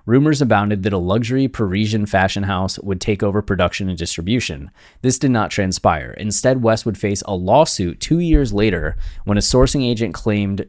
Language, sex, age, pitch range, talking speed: English, male, 20-39, 95-115 Hz, 180 wpm